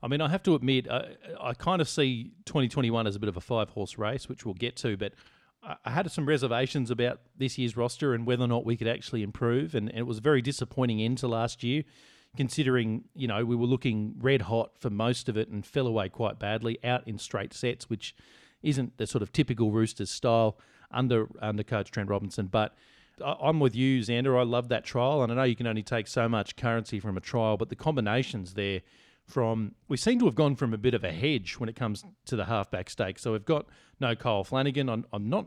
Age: 40-59